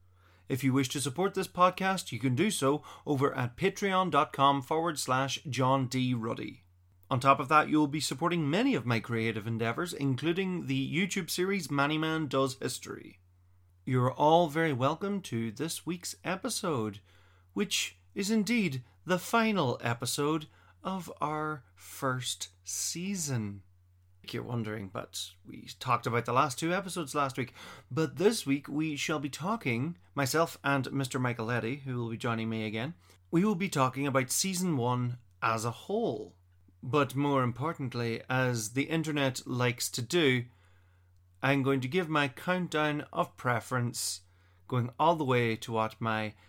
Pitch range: 110-155 Hz